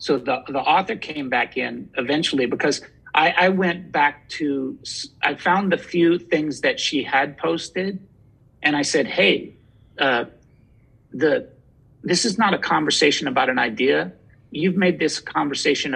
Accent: American